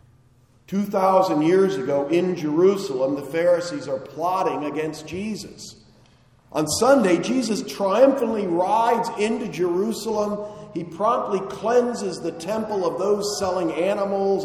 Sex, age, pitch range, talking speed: male, 50-69, 145-205 Hz, 110 wpm